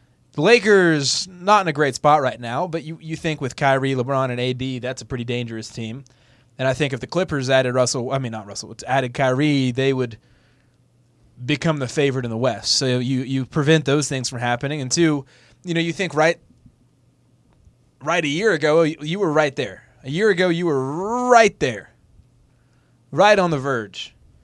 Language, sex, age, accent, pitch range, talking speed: English, male, 20-39, American, 125-155 Hz, 195 wpm